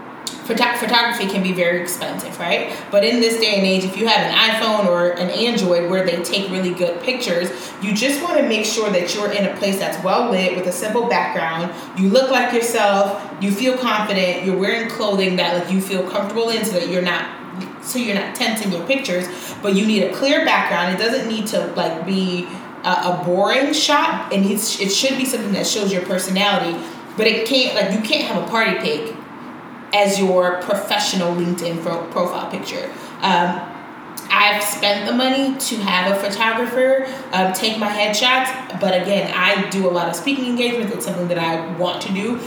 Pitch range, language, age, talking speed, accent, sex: 180-230 Hz, English, 30-49, 200 wpm, American, female